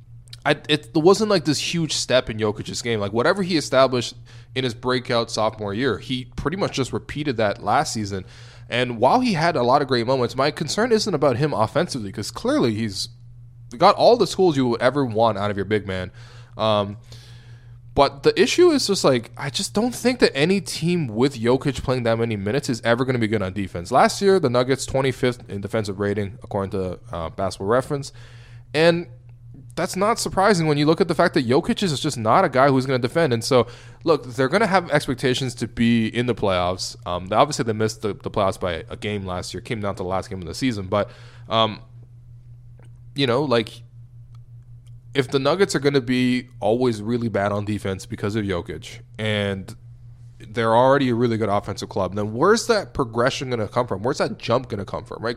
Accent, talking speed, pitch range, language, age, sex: American, 215 wpm, 110-140 Hz, English, 20-39, male